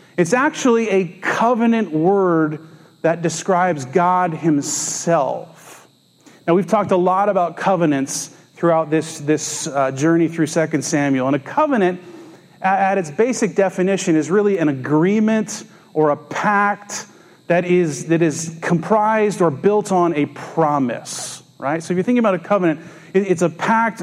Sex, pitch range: male, 160-205 Hz